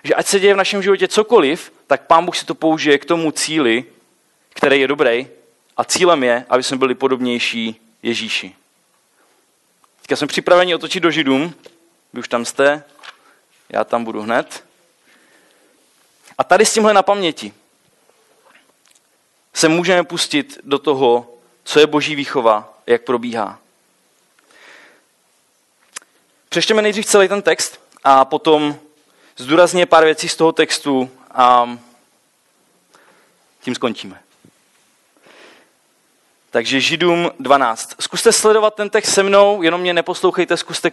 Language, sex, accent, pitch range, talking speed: Czech, male, native, 135-175 Hz, 130 wpm